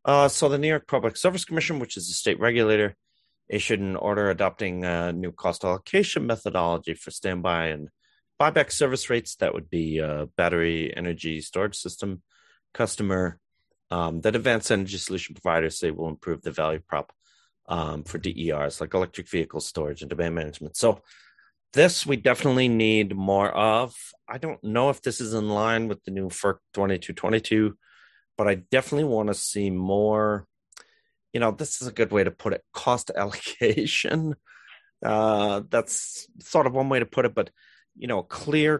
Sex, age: male, 30-49